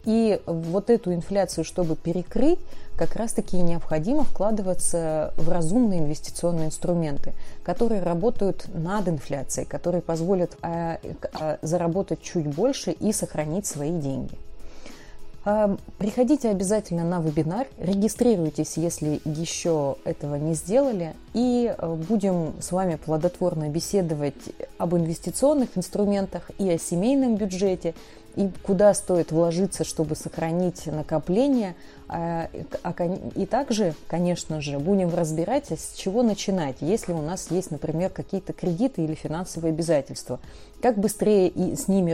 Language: Russian